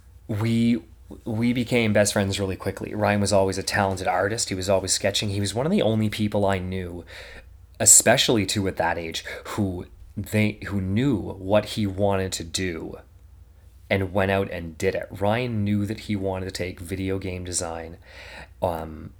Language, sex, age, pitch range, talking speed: English, male, 30-49, 95-110 Hz, 180 wpm